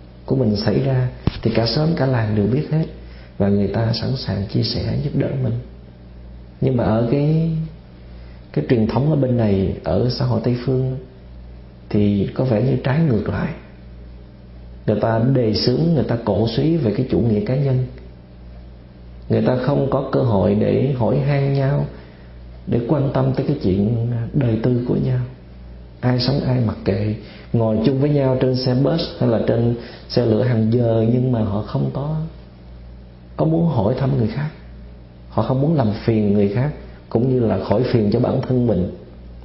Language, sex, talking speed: Vietnamese, male, 190 wpm